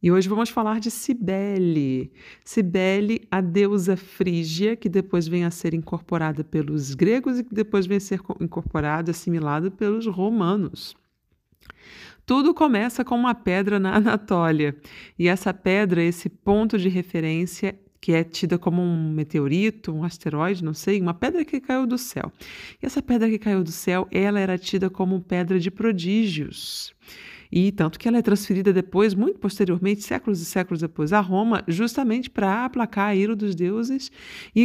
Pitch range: 170-210 Hz